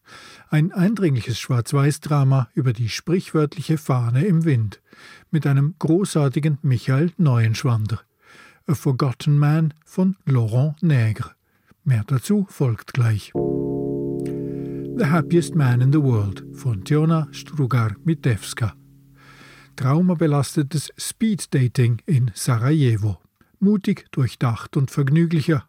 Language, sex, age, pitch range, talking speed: German, male, 50-69, 120-160 Hz, 95 wpm